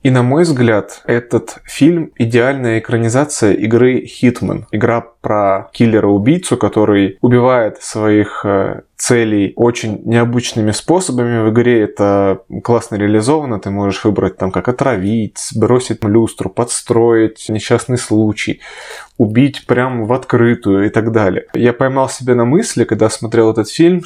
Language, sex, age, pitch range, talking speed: Russian, male, 20-39, 110-130 Hz, 130 wpm